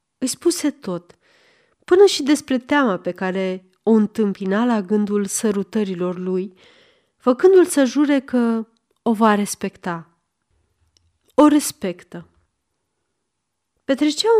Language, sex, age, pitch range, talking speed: Romanian, female, 30-49, 185-260 Hz, 105 wpm